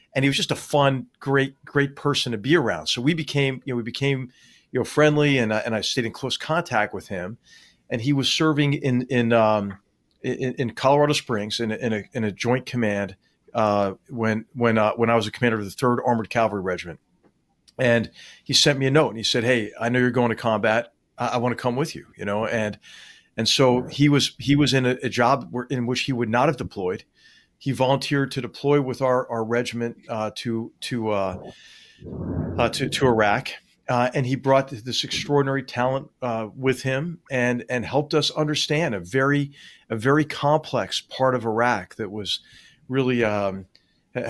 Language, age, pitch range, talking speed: English, 40-59, 115-135 Hz, 205 wpm